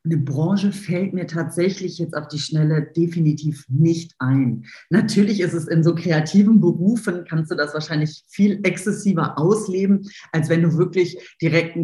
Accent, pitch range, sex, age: German, 160-200 Hz, female, 40-59